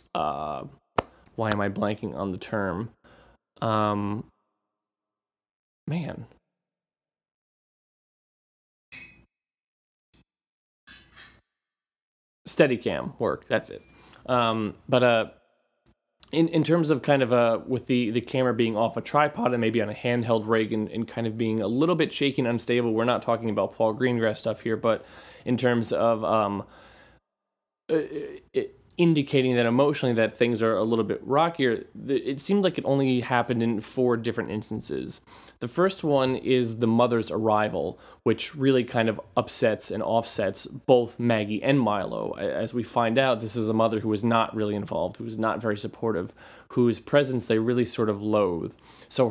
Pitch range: 110-125 Hz